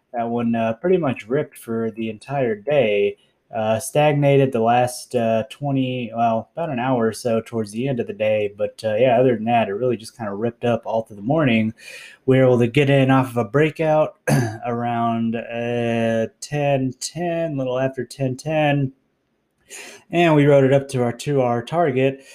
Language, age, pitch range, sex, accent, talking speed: English, 20-39, 115-135 Hz, male, American, 195 wpm